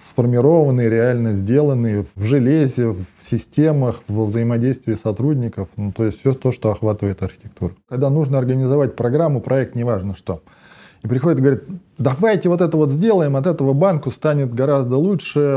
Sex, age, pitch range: male, 20-39, 120-155 Hz